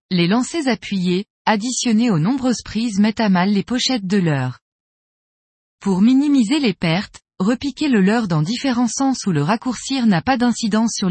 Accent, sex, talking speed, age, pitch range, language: French, female, 165 wpm, 20-39, 180-245 Hz, French